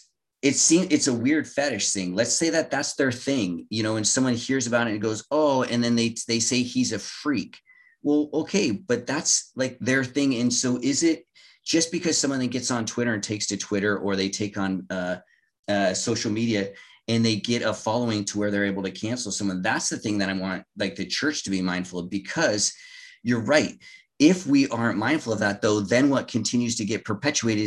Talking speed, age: 215 wpm, 30-49